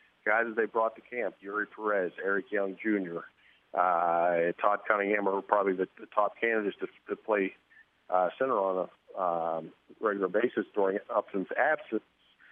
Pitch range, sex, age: 95-110 Hz, male, 50-69